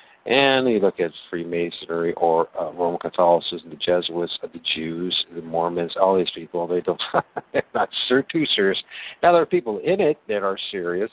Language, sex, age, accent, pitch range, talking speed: English, male, 50-69, American, 85-110 Hz, 165 wpm